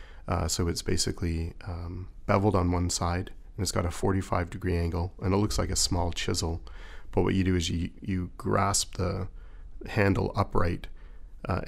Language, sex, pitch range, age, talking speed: English, male, 85-100 Hz, 30-49, 180 wpm